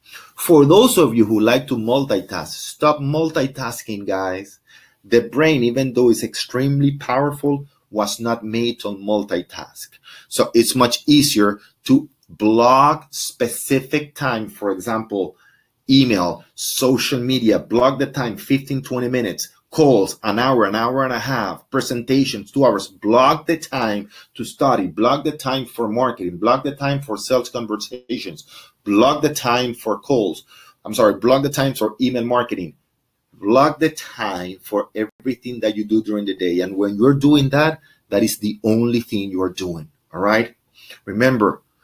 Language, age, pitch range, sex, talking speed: English, 30-49, 105-135 Hz, male, 155 wpm